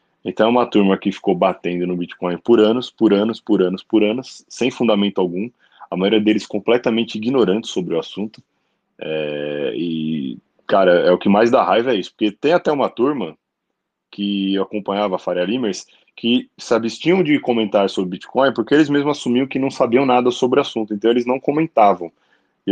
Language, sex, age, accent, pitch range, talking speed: Portuguese, male, 20-39, Brazilian, 95-125 Hz, 195 wpm